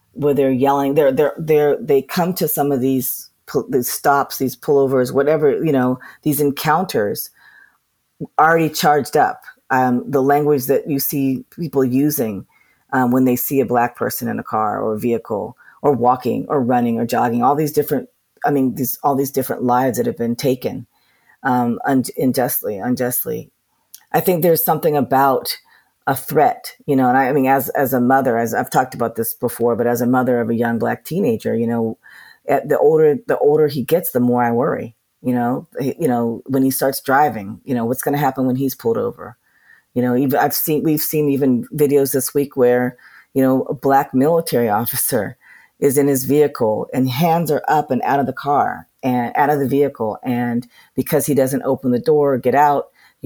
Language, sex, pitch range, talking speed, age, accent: English, female, 125-145 Hz, 200 wpm, 40-59, American